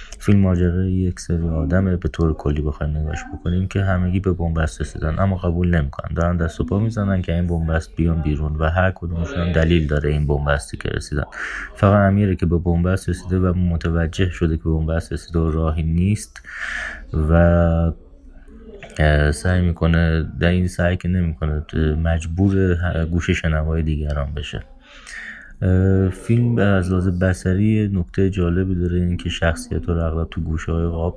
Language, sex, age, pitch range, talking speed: Persian, male, 30-49, 80-90 Hz, 155 wpm